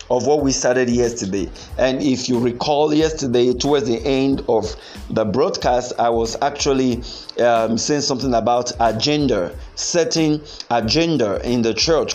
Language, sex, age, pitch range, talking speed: English, male, 50-69, 115-150 Hz, 145 wpm